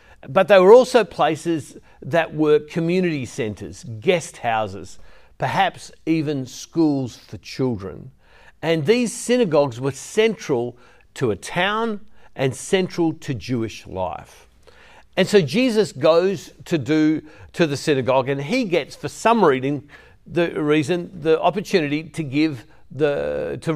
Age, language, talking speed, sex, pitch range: 50-69, English, 130 wpm, male, 140-185 Hz